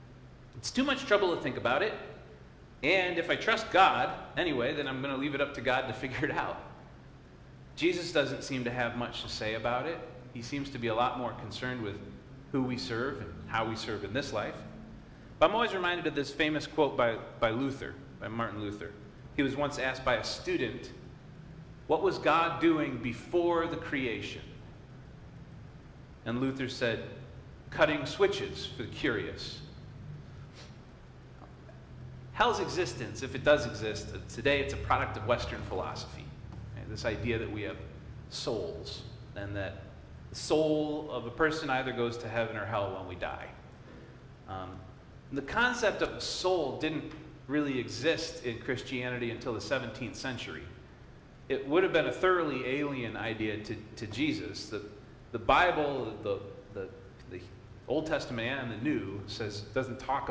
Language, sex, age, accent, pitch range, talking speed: English, male, 40-59, American, 115-145 Hz, 165 wpm